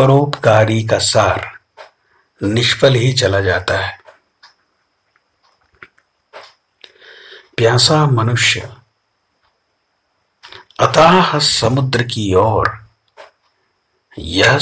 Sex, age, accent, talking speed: male, 50-69, native, 60 wpm